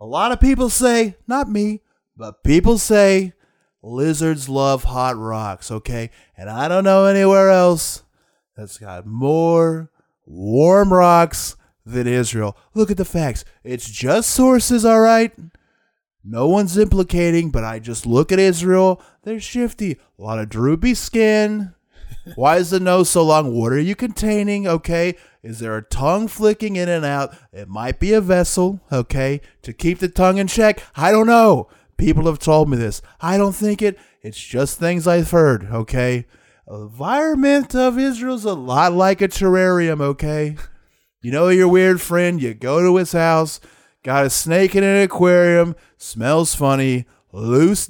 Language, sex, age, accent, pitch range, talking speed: English, male, 30-49, American, 130-195 Hz, 165 wpm